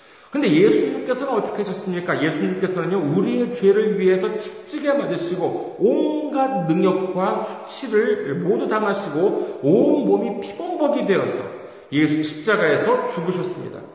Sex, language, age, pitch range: male, Korean, 40-59, 180-295 Hz